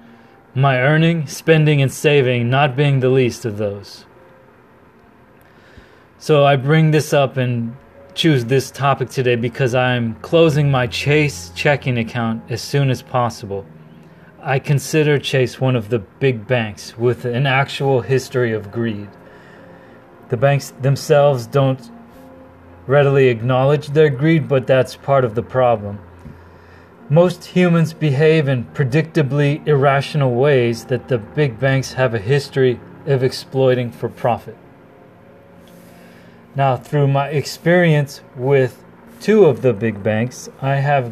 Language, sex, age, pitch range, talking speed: English, male, 30-49, 115-145 Hz, 130 wpm